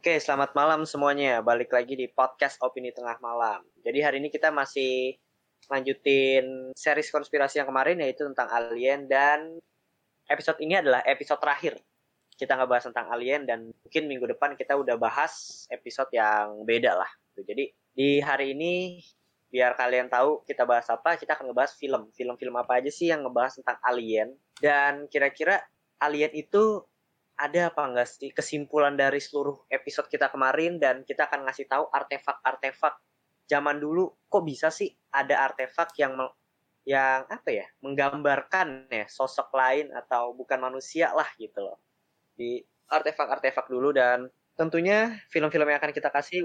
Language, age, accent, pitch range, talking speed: Indonesian, 20-39, native, 125-150 Hz, 155 wpm